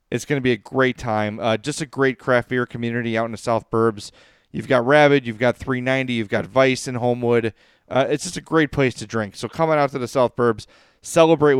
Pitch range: 110-140 Hz